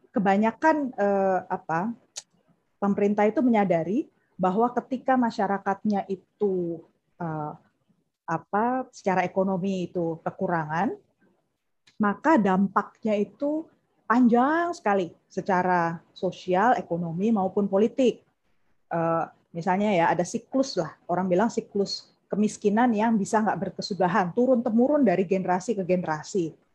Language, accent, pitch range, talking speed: English, Indonesian, 175-225 Hz, 105 wpm